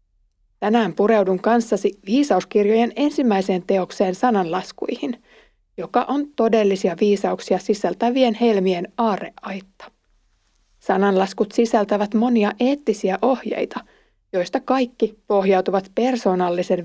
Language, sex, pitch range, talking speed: Finnish, female, 190-235 Hz, 80 wpm